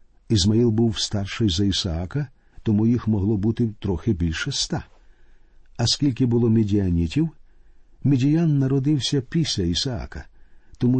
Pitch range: 100-135 Hz